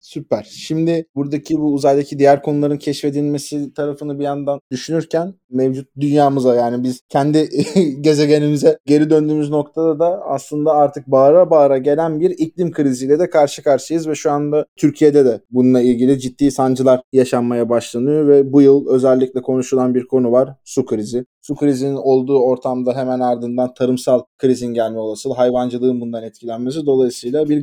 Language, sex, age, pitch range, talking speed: Turkish, male, 20-39, 125-150 Hz, 150 wpm